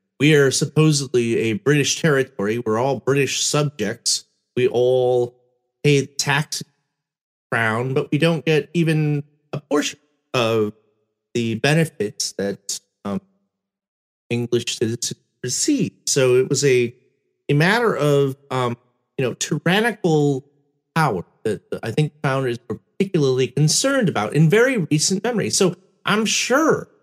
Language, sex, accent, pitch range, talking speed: English, male, American, 120-170 Hz, 135 wpm